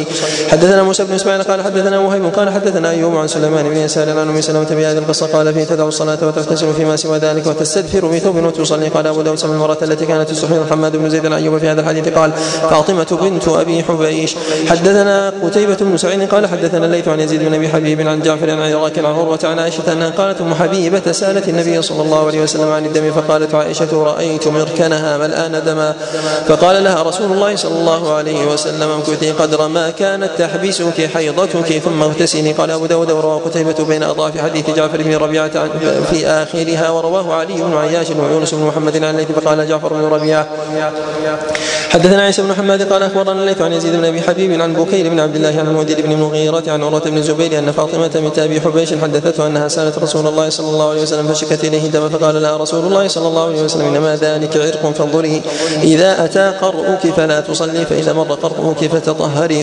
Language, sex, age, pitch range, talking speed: Arabic, male, 20-39, 155-165 Hz, 185 wpm